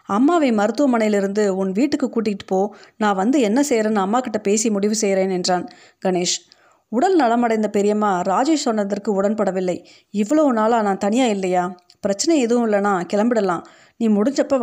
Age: 30-49